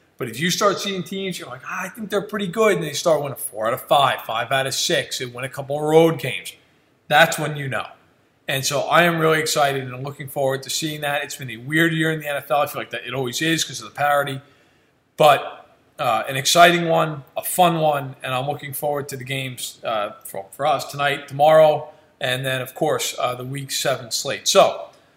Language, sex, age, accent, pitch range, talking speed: English, male, 40-59, American, 135-170 Hz, 235 wpm